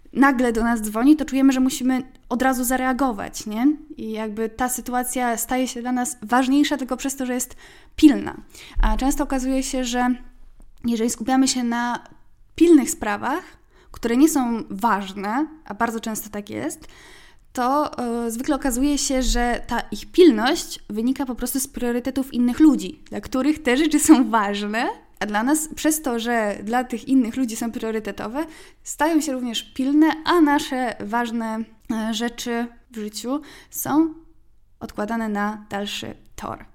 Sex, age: female, 10-29